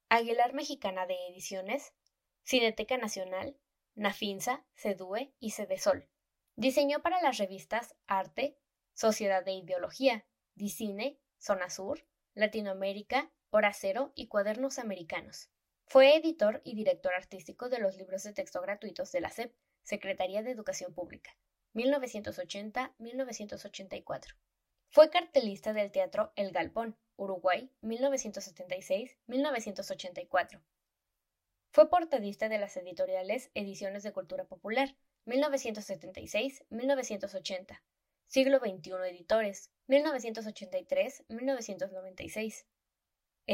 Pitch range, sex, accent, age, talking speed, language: 195-275 Hz, female, Mexican, 10-29, 90 wpm, Spanish